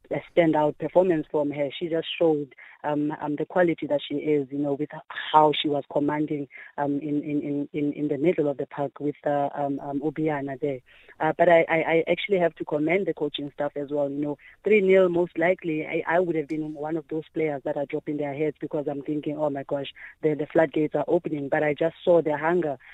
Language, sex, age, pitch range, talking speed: English, female, 20-39, 145-165 Hz, 230 wpm